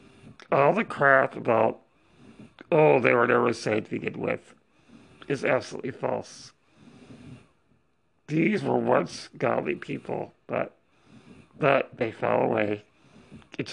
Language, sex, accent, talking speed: English, male, American, 115 wpm